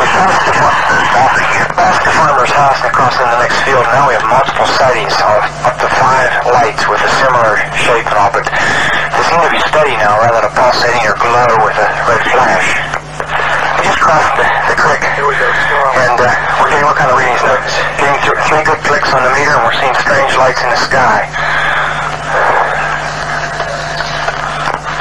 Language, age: English, 40-59